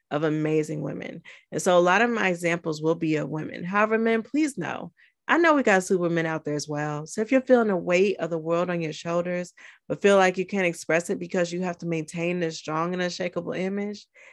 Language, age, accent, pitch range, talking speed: English, 30-49, American, 160-200 Hz, 235 wpm